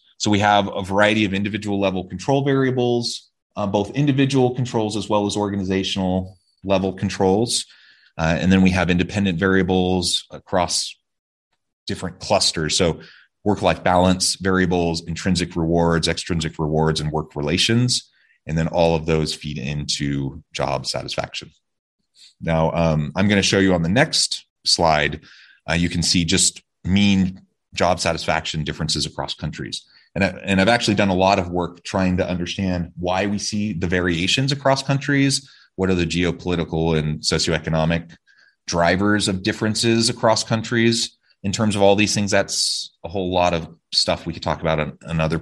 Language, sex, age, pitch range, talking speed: English, male, 30-49, 85-105 Hz, 155 wpm